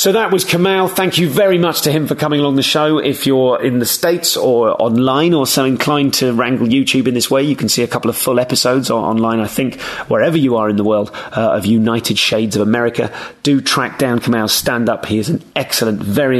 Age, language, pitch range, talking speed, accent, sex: 30-49, English, 115-140 Hz, 235 wpm, British, male